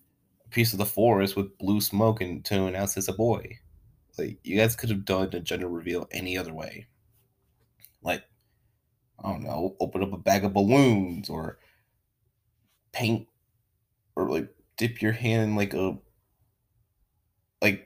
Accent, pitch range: American, 90-110 Hz